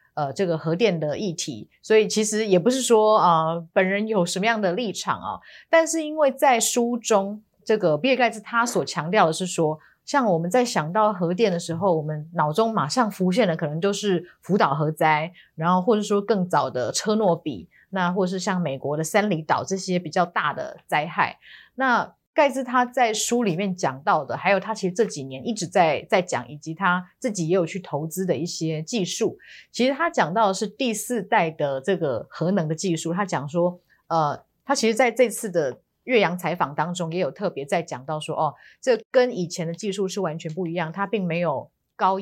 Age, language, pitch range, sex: 30-49, Chinese, 165-215 Hz, female